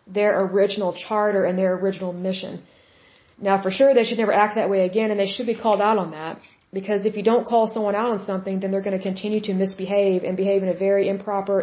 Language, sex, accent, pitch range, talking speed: Russian, female, American, 190-210 Hz, 245 wpm